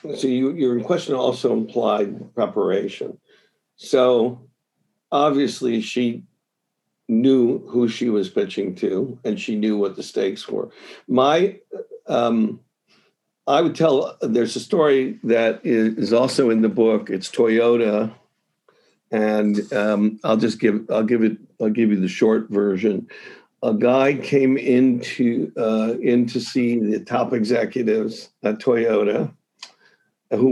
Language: English